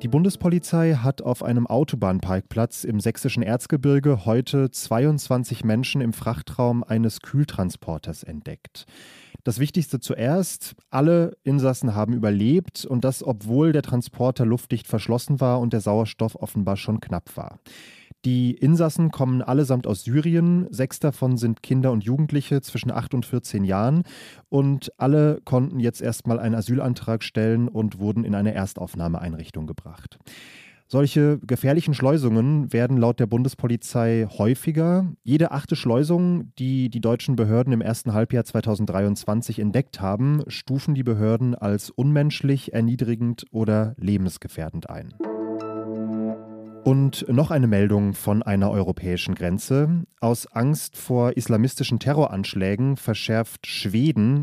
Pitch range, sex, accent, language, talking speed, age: 110-140 Hz, male, German, German, 125 wpm, 30-49